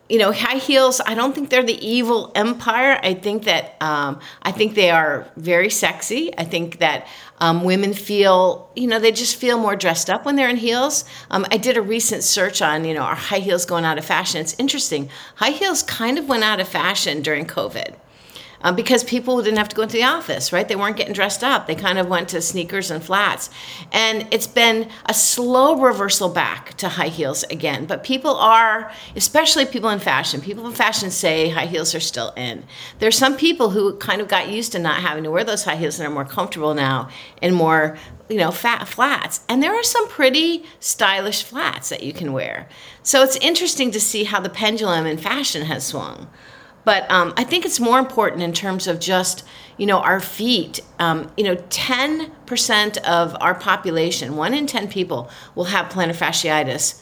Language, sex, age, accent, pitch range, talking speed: English, female, 50-69, American, 170-235 Hz, 205 wpm